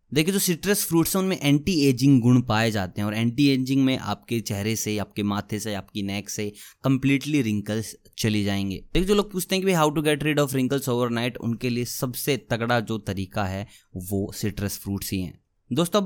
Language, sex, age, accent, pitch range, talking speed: Hindi, male, 20-39, native, 110-135 Hz, 215 wpm